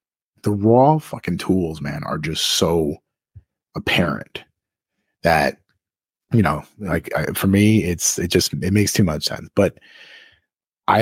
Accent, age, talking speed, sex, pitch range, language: American, 30-49, 135 wpm, male, 90-115 Hz, English